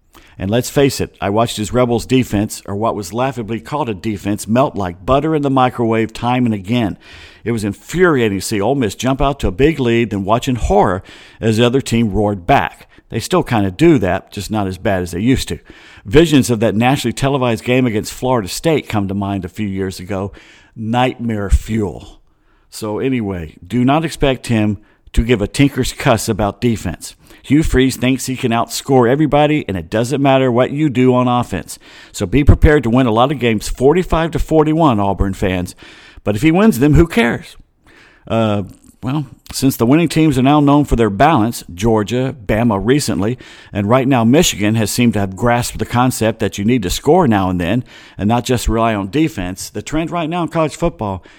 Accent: American